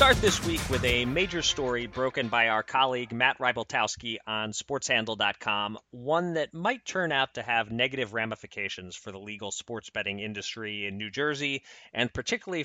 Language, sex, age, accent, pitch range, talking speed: English, male, 30-49, American, 105-125 Hz, 170 wpm